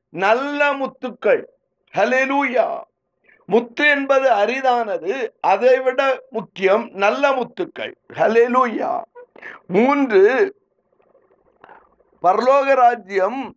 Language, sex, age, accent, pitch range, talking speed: Tamil, male, 50-69, native, 225-290 Hz, 55 wpm